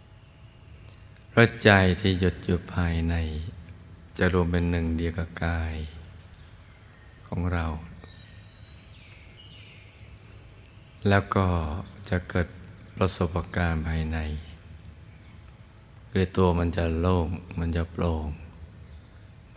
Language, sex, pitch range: Thai, male, 85-100 Hz